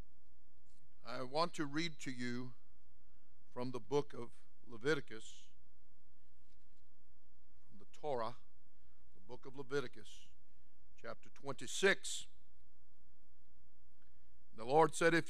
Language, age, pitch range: English, 50-69, 120-160 Hz